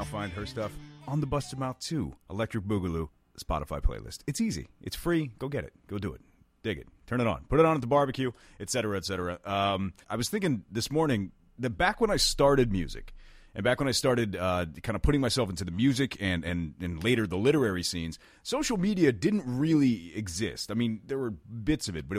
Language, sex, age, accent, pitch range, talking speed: English, male, 30-49, American, 90-130 Hz, 225 wpm